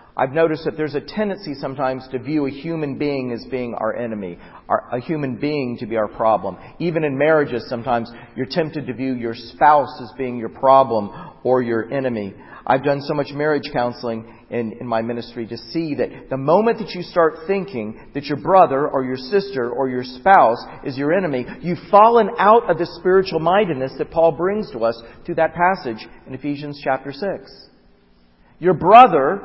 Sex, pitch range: male, 125-180 Hz